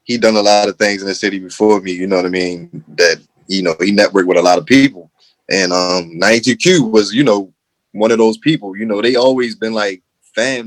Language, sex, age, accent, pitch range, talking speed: English, male, 20-39, American, 100-130 Hz, 240 wpm